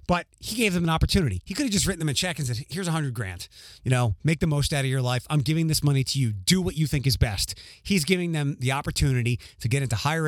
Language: English